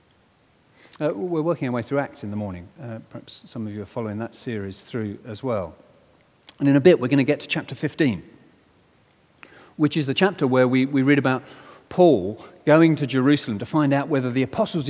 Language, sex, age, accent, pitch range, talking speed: English, male, 40-59, British, 115-160 Hz, 210 wpm